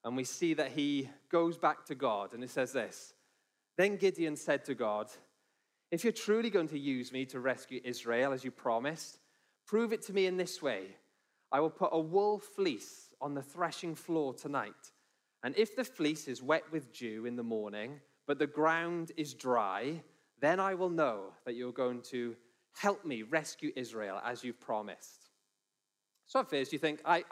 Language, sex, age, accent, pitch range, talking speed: English, male, 20-39, British, 130-175 Hz, 190 wpm